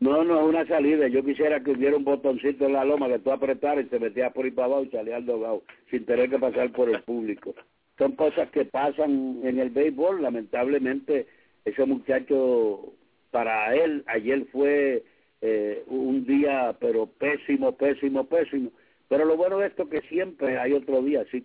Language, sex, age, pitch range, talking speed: English, male, 60-79, 125-170 Hz, 185 wpm